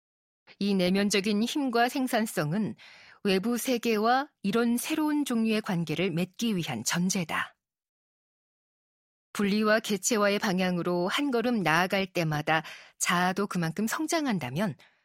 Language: Korean